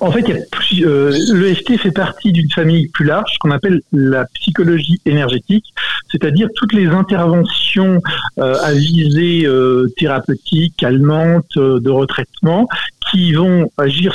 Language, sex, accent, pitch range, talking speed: French, male, French, 140-185 Hz, 130 wpm